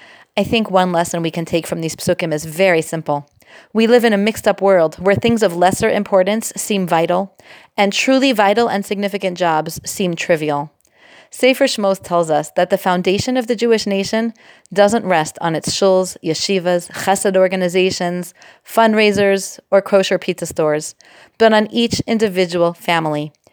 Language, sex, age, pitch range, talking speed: English, female, 30-49, 175-235 Hz, 165 wpm